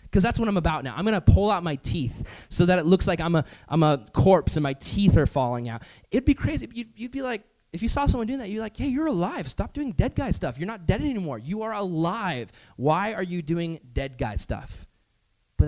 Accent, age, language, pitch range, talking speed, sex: American, 20-39, English, 130-180 Hz, 260 wpm, male